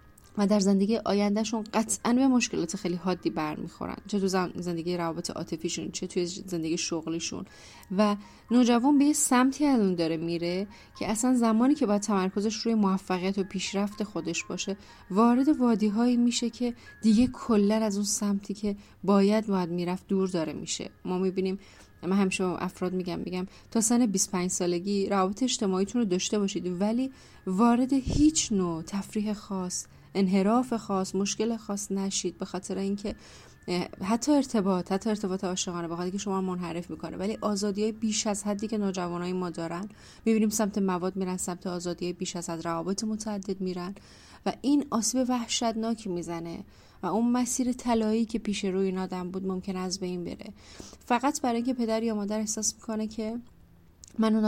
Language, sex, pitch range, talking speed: Persian, female, 185-220 Hz, 165 wpm